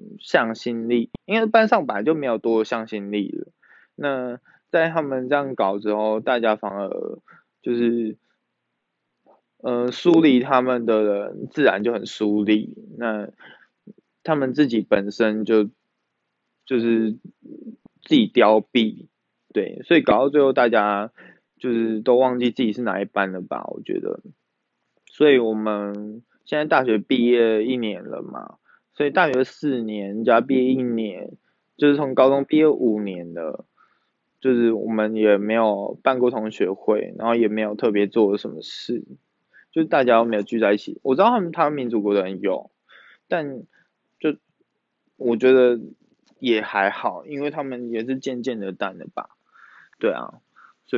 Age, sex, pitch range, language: 20-39, male, 110-135 Hz, Chinese